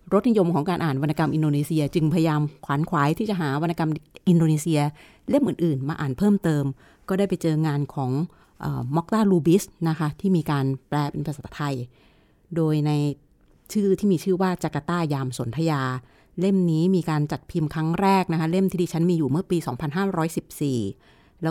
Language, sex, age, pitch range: Thai, female, 30-49, 150-180 Hz